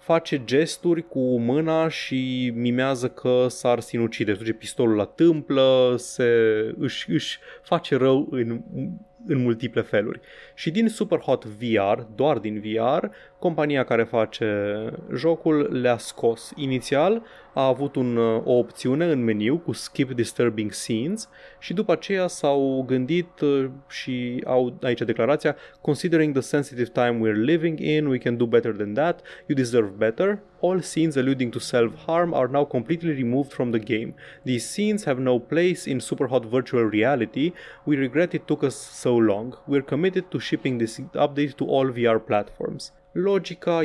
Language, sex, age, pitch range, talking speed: Romanian, male, 20-39, 115-150 Hz, 155 wpm